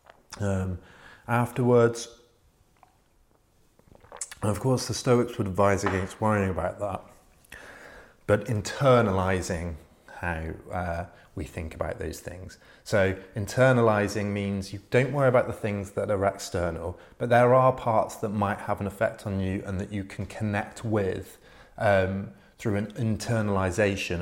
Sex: male